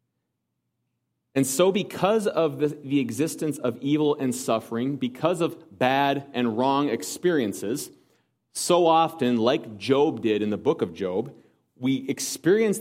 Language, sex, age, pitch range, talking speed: English, male, 30-49, 120-160 Hz, 130 wpm